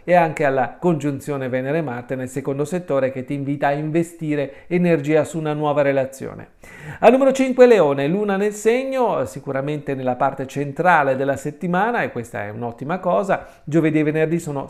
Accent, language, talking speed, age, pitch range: native, Italian, 165 wpm, 40-59, 140-185 Hz